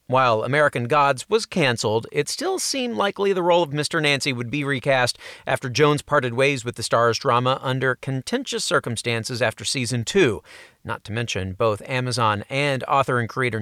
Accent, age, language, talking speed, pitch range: American, 40-59, English, 175 wpm, 125-175 Hz